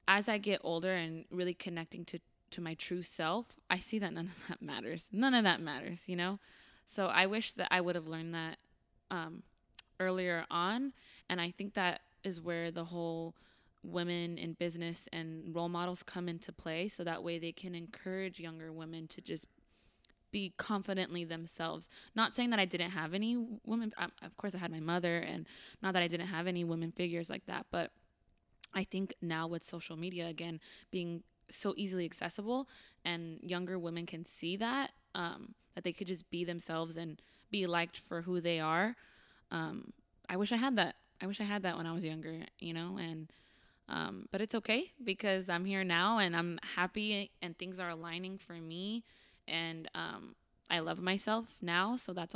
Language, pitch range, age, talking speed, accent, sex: English, 170-195 Hz, 20-39, 190 wpm, American, female